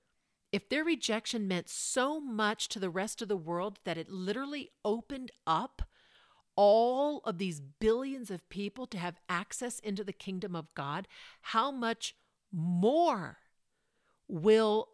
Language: English